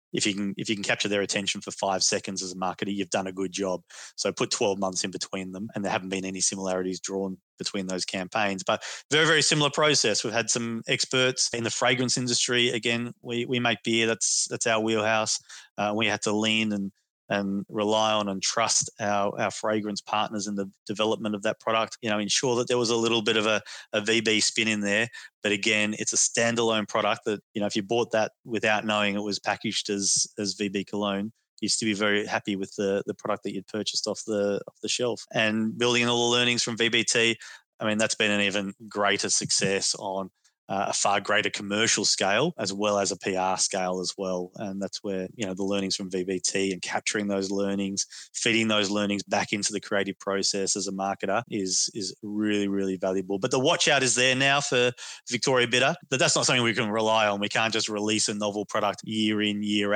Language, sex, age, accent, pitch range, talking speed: English, male, 20-39, Australian, 100-115 Hz, 220 wpm